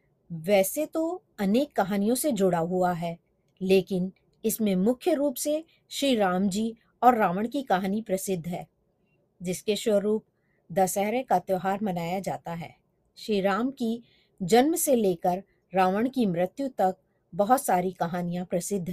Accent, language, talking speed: native, Hindi, 140 wpm